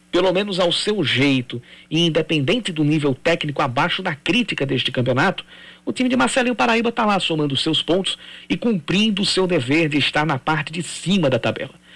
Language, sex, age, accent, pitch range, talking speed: Portuguese, male, 50-69, Brazilian, 145-195 Hz, 190 wpm